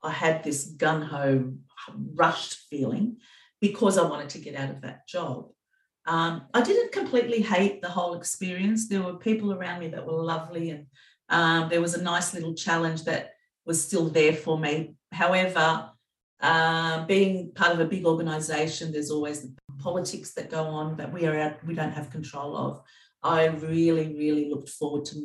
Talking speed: 175 wpm